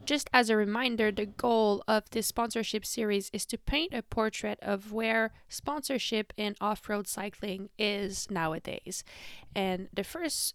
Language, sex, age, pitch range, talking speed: French, female, 20-39, 195-225 Hz, 150 wpm